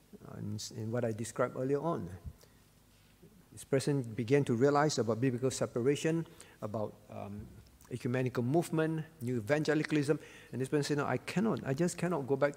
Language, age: English, 50-69